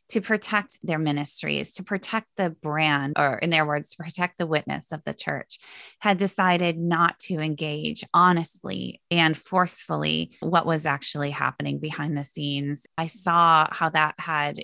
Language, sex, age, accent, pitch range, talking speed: English, female, 20-39, American, 150-190 Hz, 160 wpm